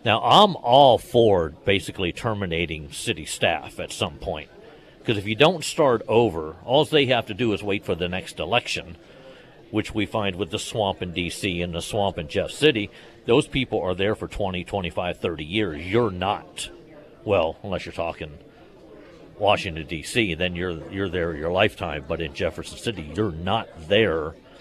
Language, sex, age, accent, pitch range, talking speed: English, male, 50-69, American, 90-125 Hz, 175 wpm